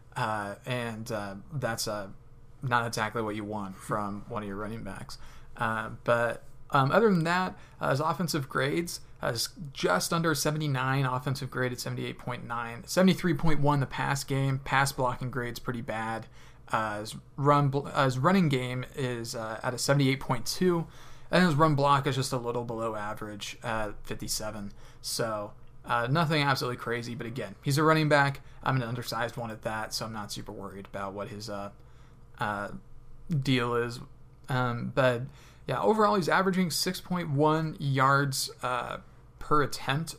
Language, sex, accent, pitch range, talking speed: English, male, American, 120-150 Hz, 165 wpm